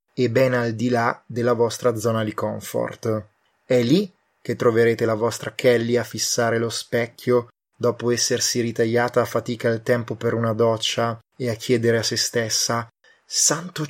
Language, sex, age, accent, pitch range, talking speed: Italian, male, 20-39, native, 110-125 Hz, 165 wpm